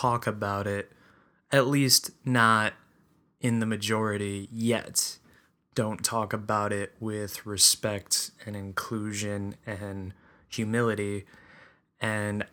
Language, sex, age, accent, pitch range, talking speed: English, male, 20-39, American, 105-120 Hz, 100 wpm